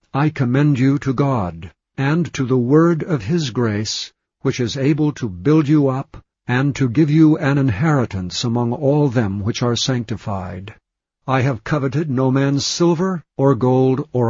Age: 60-79